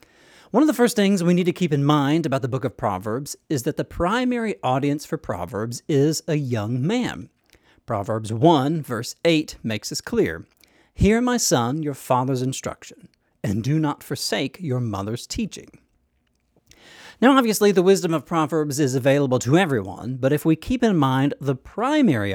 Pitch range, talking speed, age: 125-170 Hz, 175 wpm, 40-59